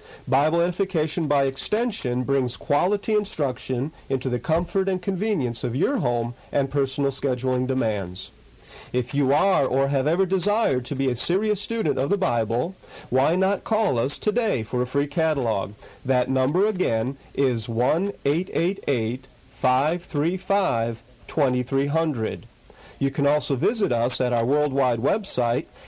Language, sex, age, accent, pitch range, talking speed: English, male, 50-69, American, 125-175 Hz, 130 wpm